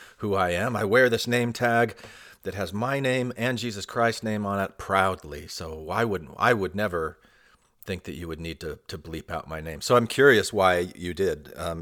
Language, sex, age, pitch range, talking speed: English, male, 40-59, 85-110 Hz, 220 wpm